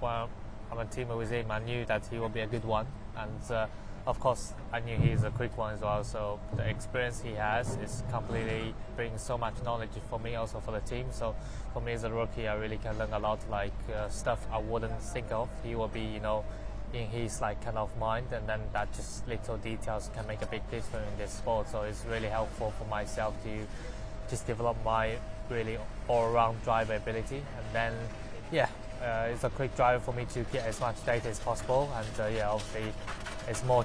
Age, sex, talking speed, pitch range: 20-39, male, 220 wpm, 105-115 Hz